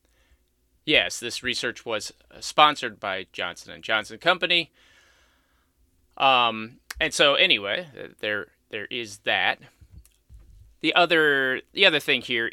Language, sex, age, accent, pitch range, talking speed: English, male, 30-49, American, 110-170 Hz, 115 wpm